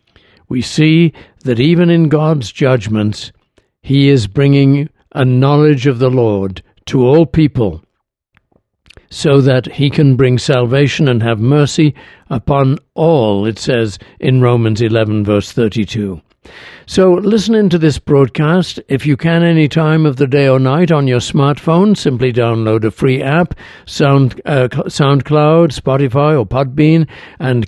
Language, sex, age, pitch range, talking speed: English, male, 60-79, 125-155 Hz, 140 wpm